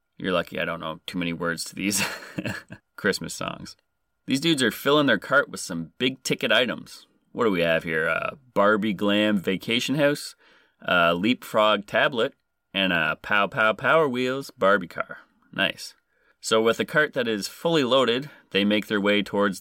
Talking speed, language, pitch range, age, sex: 180 wpm, English, 95-120 Hz, 30-49, male